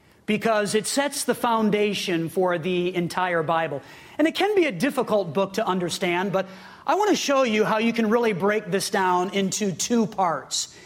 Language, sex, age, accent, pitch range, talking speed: English, male, 40-59, American, 180-225 Hz, 190 wpm